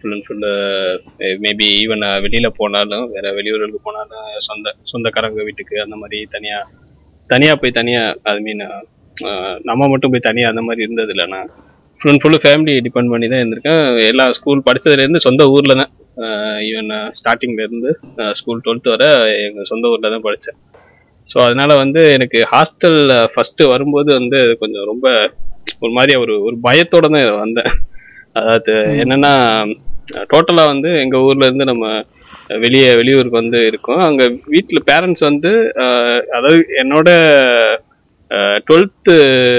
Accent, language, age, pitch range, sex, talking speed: native, Tamil, 20-39, 115-145 Hz, male, 140 wpm